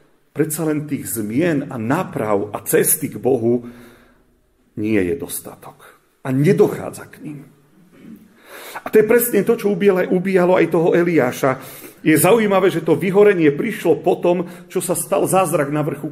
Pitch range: 135-180 Hz